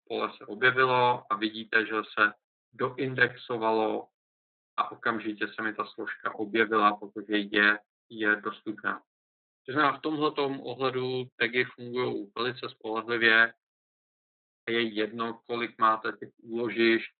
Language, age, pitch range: Czech, 50-69, 105-120 Hz